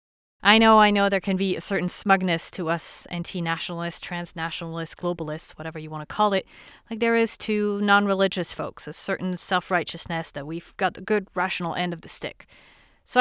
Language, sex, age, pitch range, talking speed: English, female, 30-49, 165-210 Hz, 185 wpm